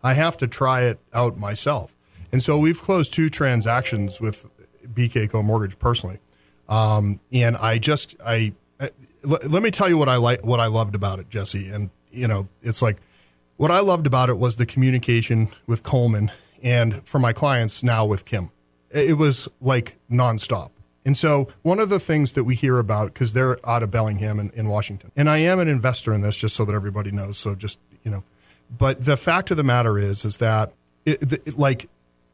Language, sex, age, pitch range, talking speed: English, male, 40-59, 105-140 Hz, 200 wpm